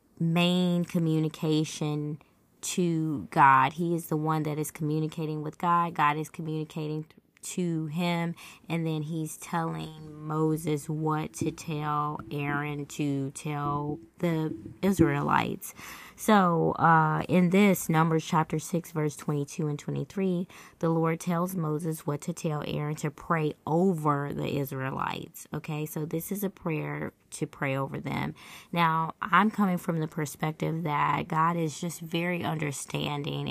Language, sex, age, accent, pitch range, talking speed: English, female, 20-39, American, 150-165 Hz, 140 wpm